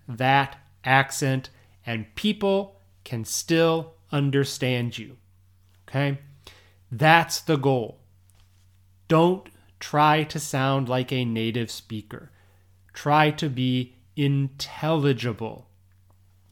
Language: English